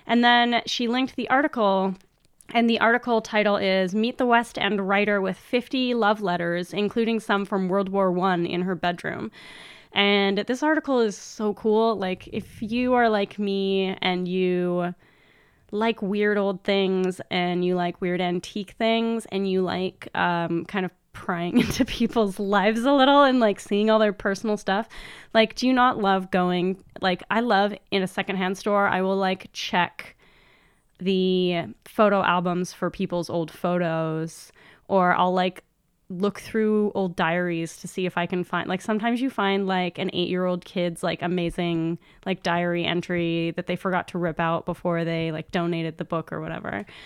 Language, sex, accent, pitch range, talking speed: English, female, American, 175-210 Hz, 175 wpm